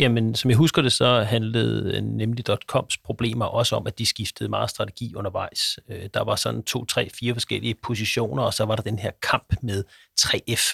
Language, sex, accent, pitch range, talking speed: Danish, male, native, 115-140 Hz, 195 wpm